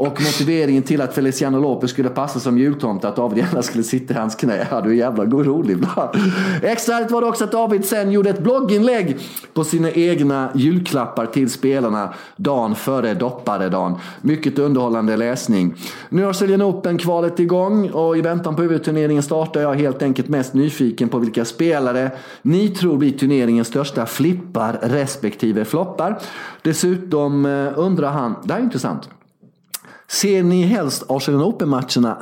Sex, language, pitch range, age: male, Swedish, 120-165 Hz, 30-49